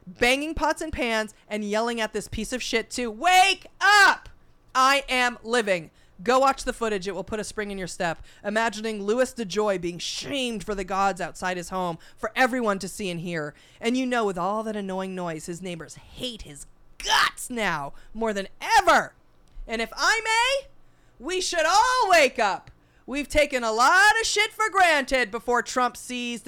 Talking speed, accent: 190 wpm, American